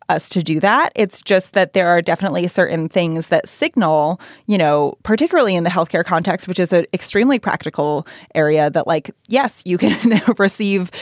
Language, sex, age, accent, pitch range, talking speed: English, female, 20-39, American, 175-215 Hz, 180 wpm